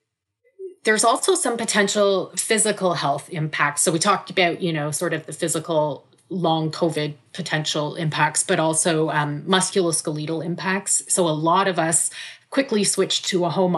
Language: English